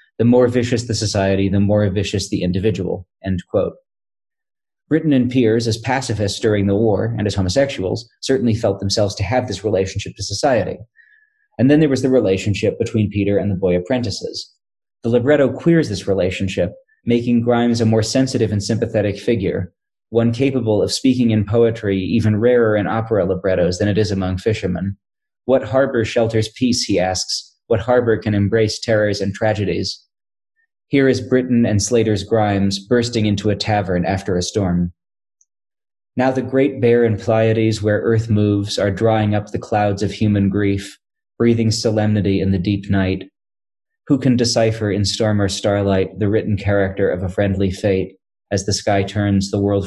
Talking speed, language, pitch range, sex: 170 wpm, English, 100-120 Hz, male